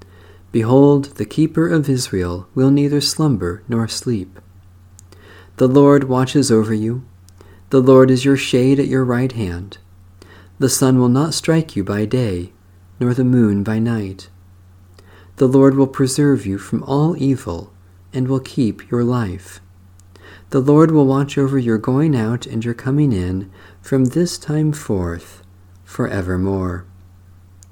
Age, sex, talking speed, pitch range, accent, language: 50-69, male, 145 wpm, 90-135 Hz, American, English